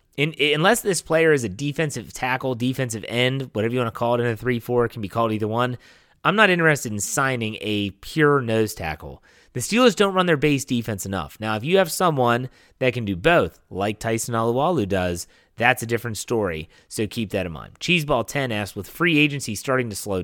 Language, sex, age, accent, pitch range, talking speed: English, male, 30-49, American, 105-145 Hz, 215 wpm